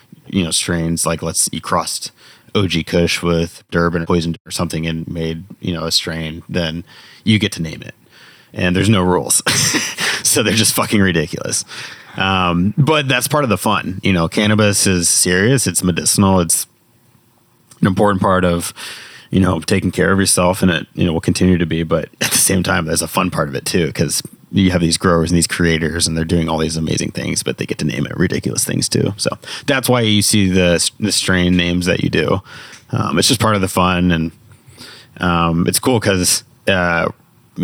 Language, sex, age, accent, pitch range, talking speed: English, male, 30-49, American, 85-100 Hz, 205 wpm